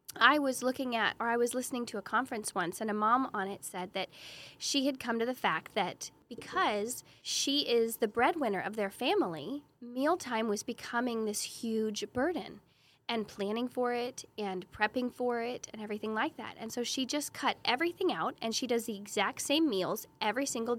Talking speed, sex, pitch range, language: 195 wpm, female, 210-275 Hz, English